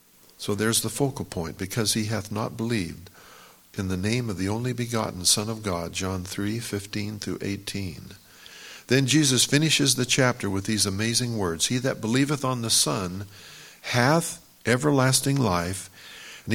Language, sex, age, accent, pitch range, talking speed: English, male, 50-69, American, 95-125 Hz, 160 wpm